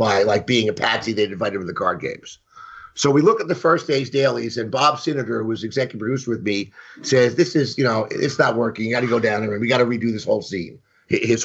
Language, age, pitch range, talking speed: English, 50-69, 115-145 Hz, 275 wpm